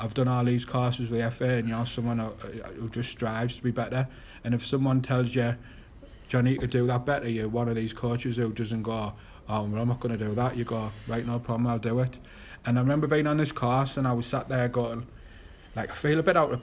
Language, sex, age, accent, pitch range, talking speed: English, male, 30-49, British, 115-130 Hz, 260 wpm